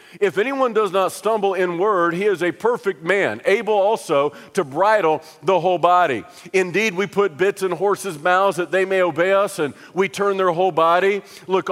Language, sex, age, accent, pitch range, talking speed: English, male, 50-69, American, 180-220 Hz, 195 wpm